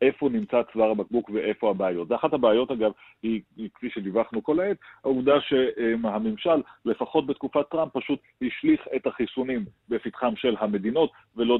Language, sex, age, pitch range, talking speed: Hebrew, male, 40-59, 105-135 Hz, 140 wpm